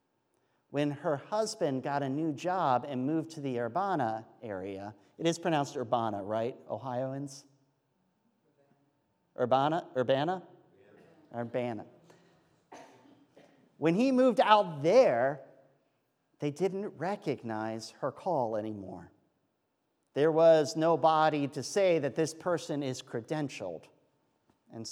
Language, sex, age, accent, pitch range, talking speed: English, male, 40-59, American, 125-160 Hz, 105 wpm